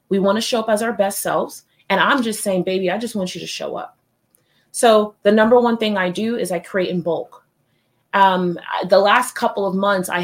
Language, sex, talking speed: English, female, 230 wpm